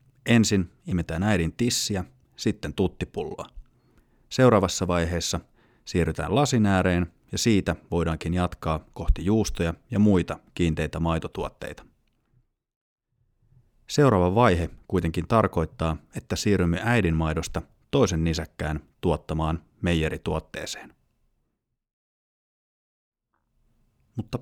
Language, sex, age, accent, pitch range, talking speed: Finnish, male, 30-49, native, 85-110 Hz, 80 wpm